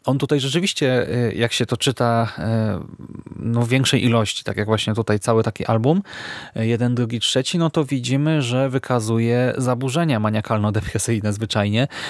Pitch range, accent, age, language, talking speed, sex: 115-130 Hz, native, 20-39, Polish, 145 wpm, male